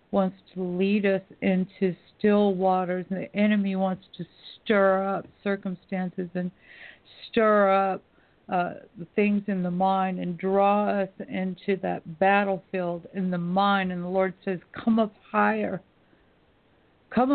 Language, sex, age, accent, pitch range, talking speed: English, female, 50-69, American, 185-210 Hz, 140 wpm